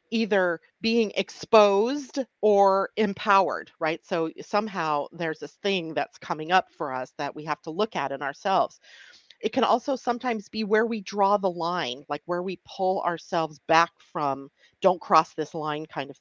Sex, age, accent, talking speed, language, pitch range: female, 40-59, American, 175 wpm, English, 165-205 Hz